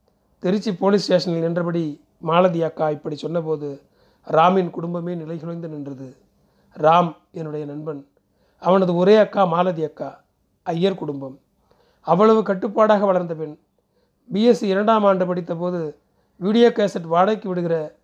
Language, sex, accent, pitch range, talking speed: Tamil, male, native, 160-200 Hz, 120 wpm